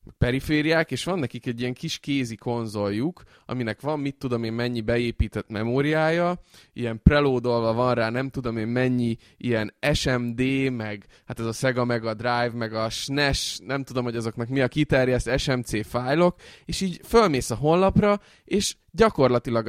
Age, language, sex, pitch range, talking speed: 20-39, Hungarian, male, 115-145 Hz, 165 wpm